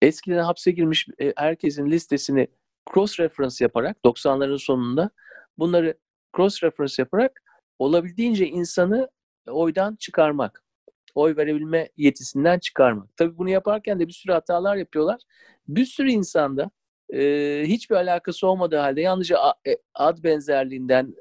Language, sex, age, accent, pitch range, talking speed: Turkish, male, 50-69, native, 145-205 Hz, 110 wpm